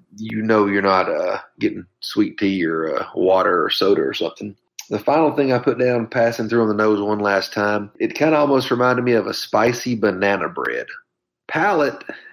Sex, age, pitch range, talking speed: male, 30-49, 110-135 Hz, 200 wpm